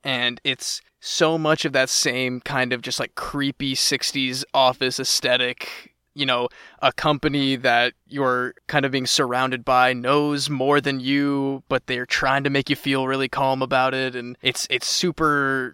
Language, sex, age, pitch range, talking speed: English, male, 20-39, 125-150 Hz, 170 wpm